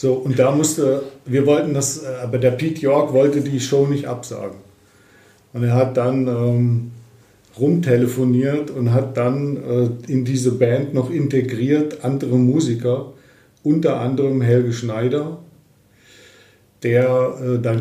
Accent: German